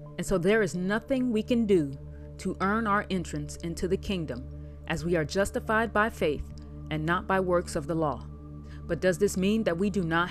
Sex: female